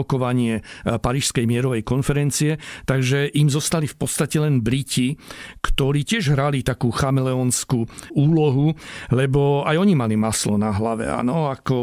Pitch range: 120-145 Hz